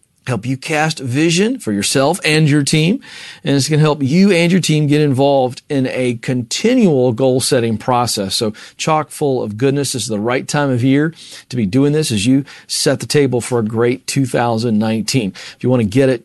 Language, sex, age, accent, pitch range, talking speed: English, male, 40-59, American, 130-165 Hz, 205 wpm